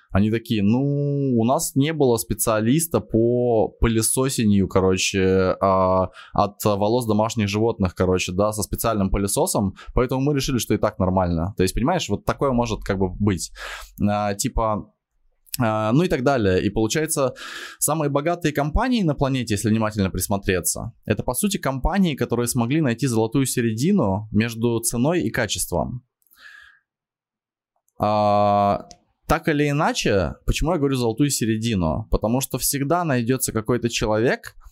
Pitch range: 105-130 Hz